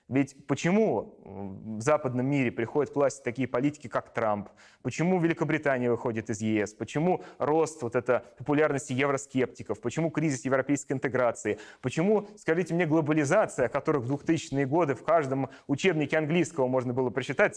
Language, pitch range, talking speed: Russian, 125-155 Hz, 145 wpm